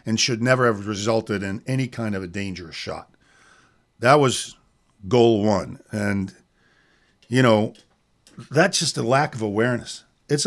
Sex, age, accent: male, 50-69, American